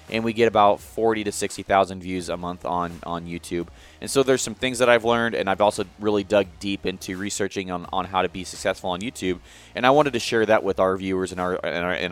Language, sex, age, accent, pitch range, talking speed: English, male, 30-49, American, 90-105 Hz, 240 wpm